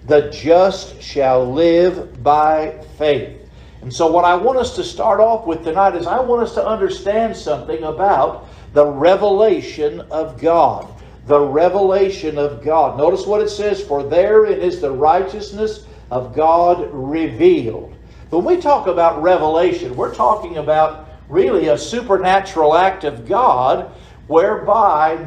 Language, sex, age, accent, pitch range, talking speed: English, male, 60-79, American, 155-225 Hz, 145 wpm